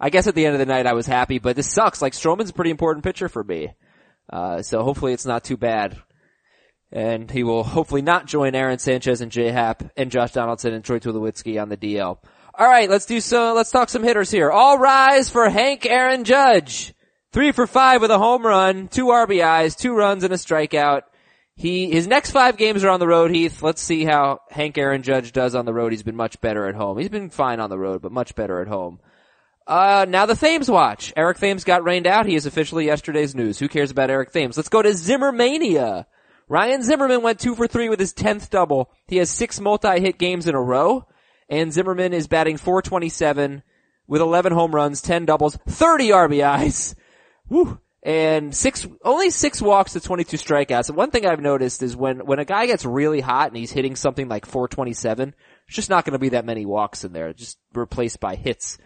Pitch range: 130-200 Hz